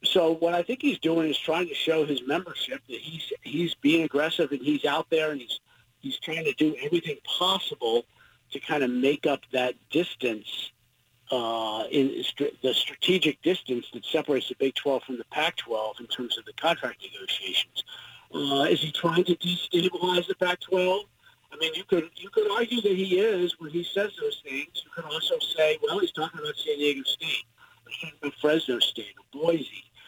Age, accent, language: 50-69, American, English